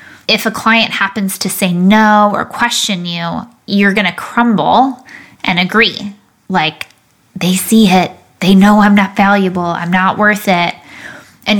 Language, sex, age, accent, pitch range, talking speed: English, female, 10-29, American, 180-215 Hz, 150 wpm